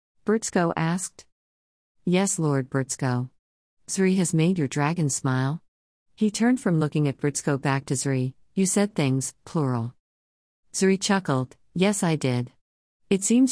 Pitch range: 130-175 Hz